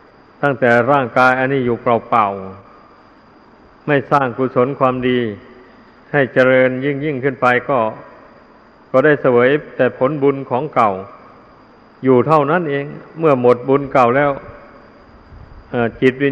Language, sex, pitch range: Thai, male, 120-140 Hz